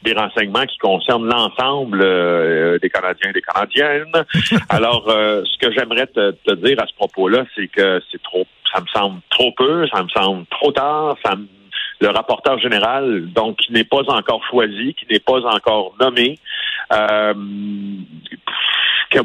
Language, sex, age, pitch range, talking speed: French, male, 50-69, 95-135 Hz, 170 wpm